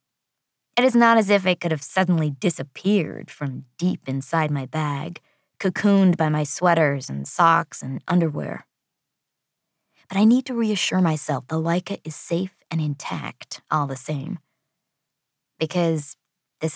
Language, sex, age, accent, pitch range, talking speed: English, female, 20-39, American, 150-195 Hz, 145 wpm